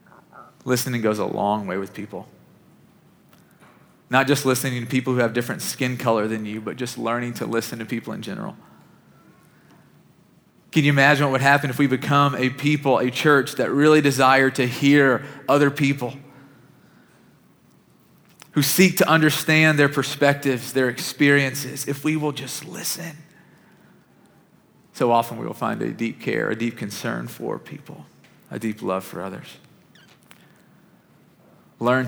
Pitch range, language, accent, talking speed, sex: 120-150 Hz, English, American, 150 wpm, male